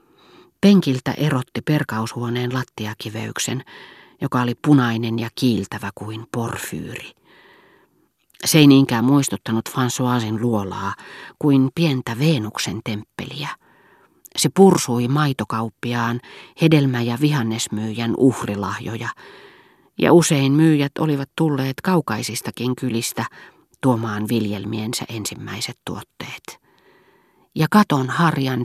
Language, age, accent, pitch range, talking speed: Finnish, 40-59, native, 115-145 Hz, 90 wpm